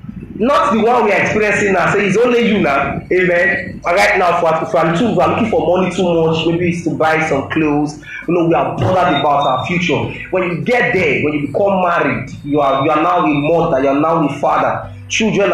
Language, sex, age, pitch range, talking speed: English, male, 30-49, 155-195 Hz, 210 wpm